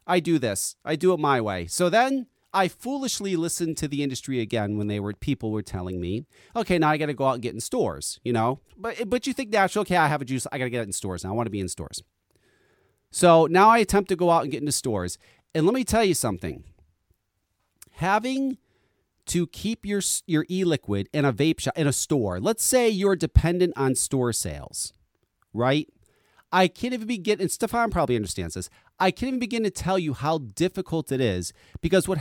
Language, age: English, 40-59